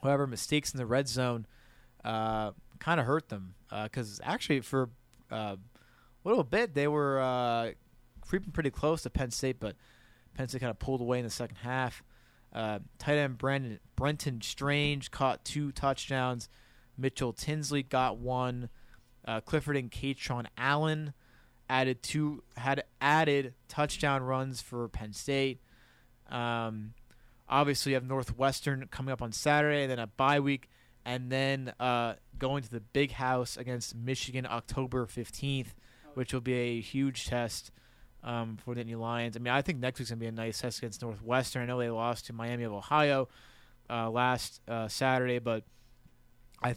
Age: 20-39